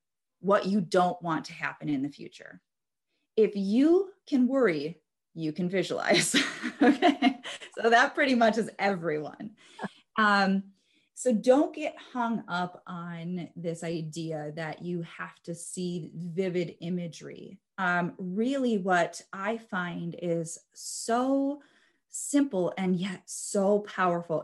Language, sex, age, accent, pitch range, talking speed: English, female, 30-49, American, 160-205 Hz, 125 wpm